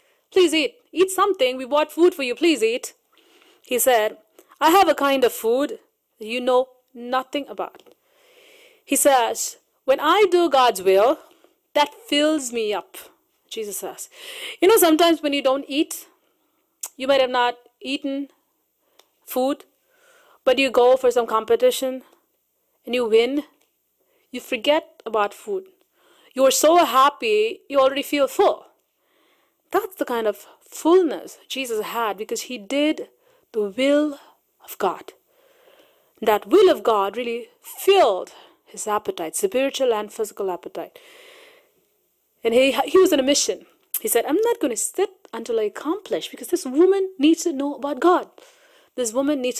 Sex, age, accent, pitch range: female, 30-49, Indian, 255-390 Hz